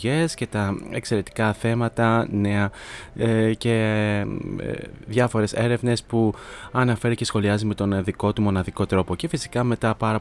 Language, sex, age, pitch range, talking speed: Greek, male, 20-39, 100-120 Hz, 145 wpm